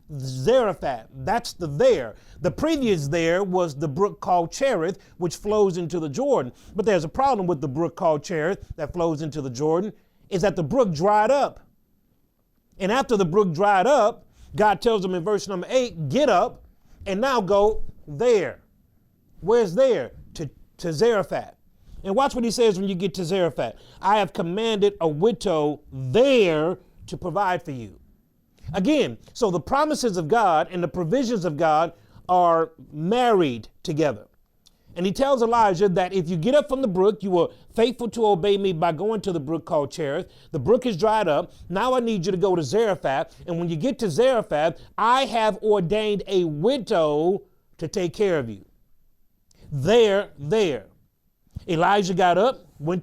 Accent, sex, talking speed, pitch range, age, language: American, male, 175 wpm, 165-220 Hz, 30-49, English